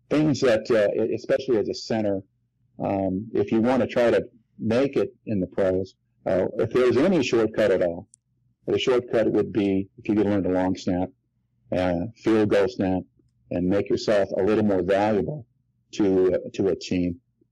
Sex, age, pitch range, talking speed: male, 50-69, 95-120 Hz, 180 wpm